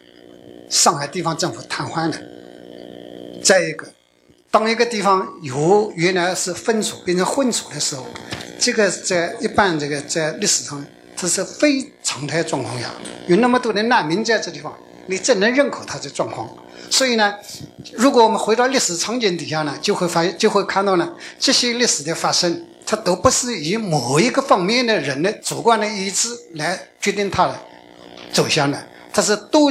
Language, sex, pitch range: Chinese, male, 150-220 Hz